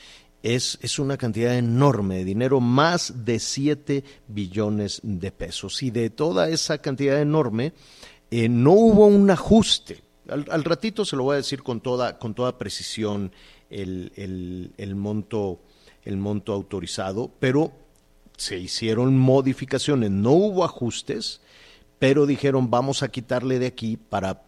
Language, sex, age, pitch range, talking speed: Spanish, male, 50-69, 105-140 Hz, 145 wpm